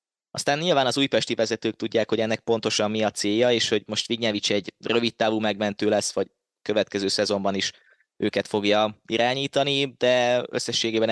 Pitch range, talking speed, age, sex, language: 100-110 Hz, 160 wpm, 20-39, male, Hungarian